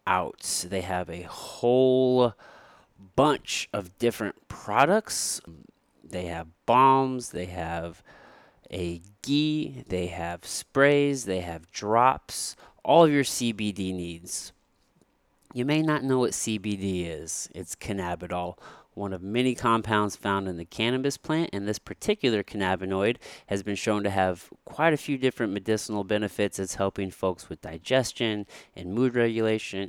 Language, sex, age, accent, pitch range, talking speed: English, male, 30-49, American, 90-125 Hz, 130 wpm